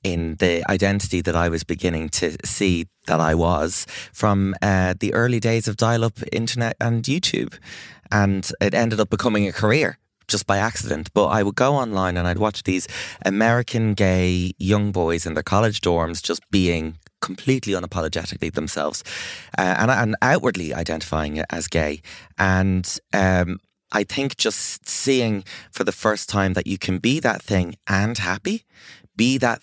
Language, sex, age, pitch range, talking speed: English, male, 20-39, 95-120 Hz, 165 wpm